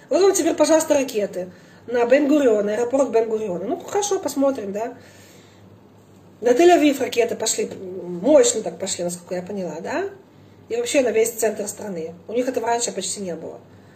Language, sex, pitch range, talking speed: Russian, female, 220-320 Hz, 160 wpm